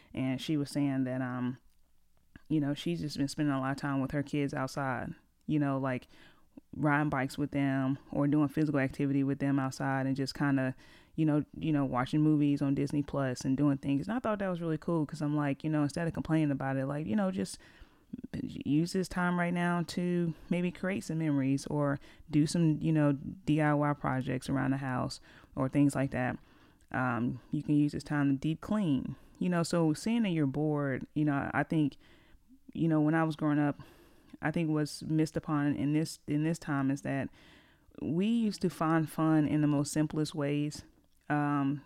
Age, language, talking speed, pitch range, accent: 30-49, English, 210 wpm, 140-160 Hz, American